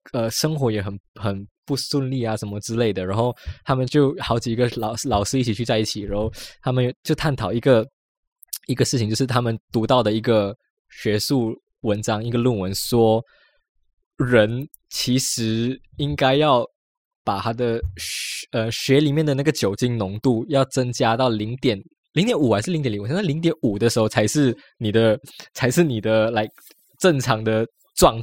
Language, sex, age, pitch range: Chinese, male, 20-39, 110-150 Hz